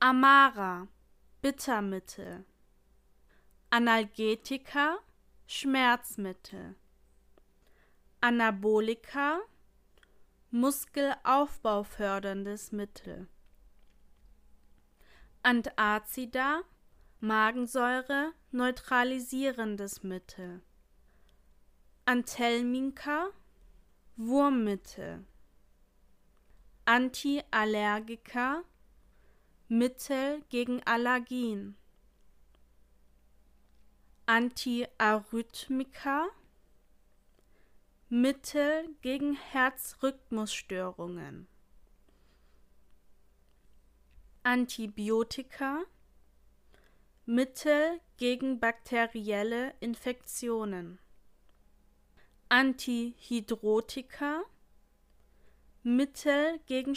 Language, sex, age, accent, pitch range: German, female, 20-39, German, 195-265 Hz